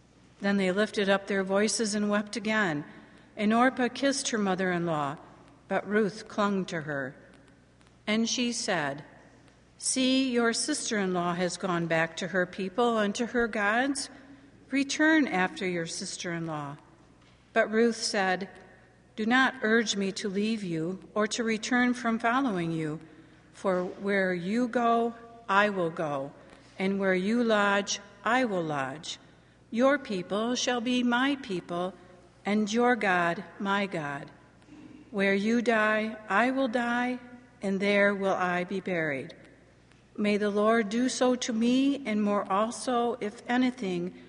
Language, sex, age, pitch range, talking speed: English, female, 60-79, 180-235 Hz, 140 wpm